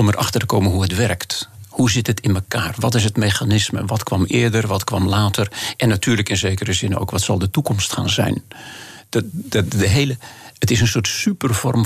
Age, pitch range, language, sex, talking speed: 50-69, 105-120 Hz, Dutch, male, 195 wpm